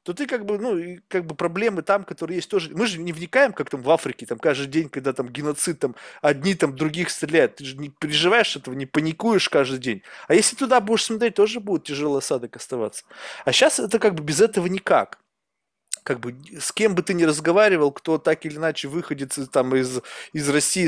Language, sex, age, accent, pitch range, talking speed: Russian, male, 20-39, native, 140-190 Hz, 215 wpm